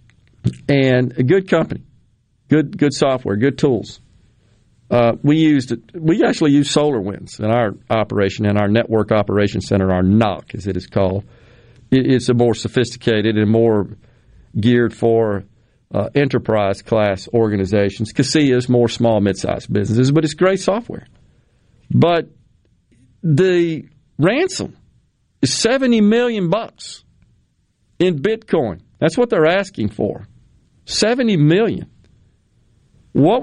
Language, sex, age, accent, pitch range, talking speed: English, male, 50-69, American, 105-145 Hz, 120 wpm